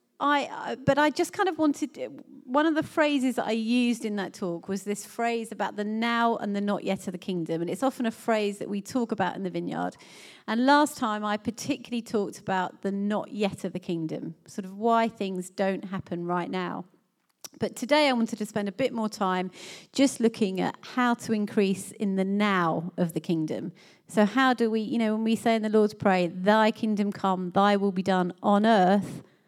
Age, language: 30-49, English